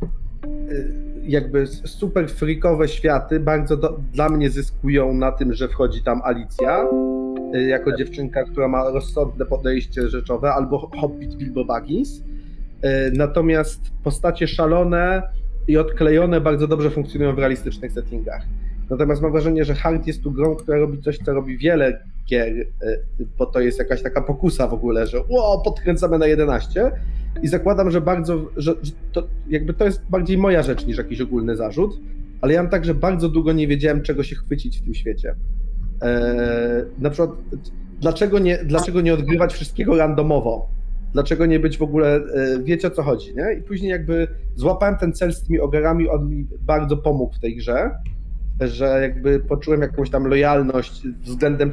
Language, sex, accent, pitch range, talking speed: Polish, male, native, 130-160 Hz, 160 wpm